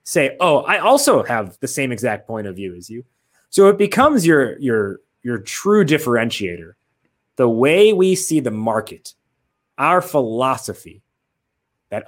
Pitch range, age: 105-135 Hz, 20-39